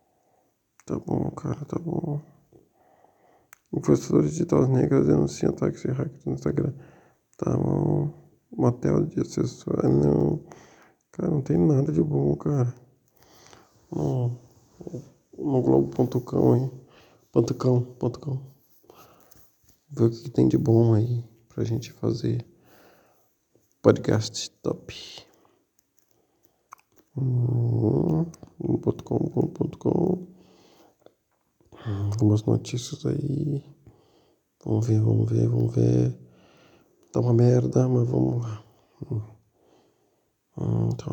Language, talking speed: Portuguese, 95 wpm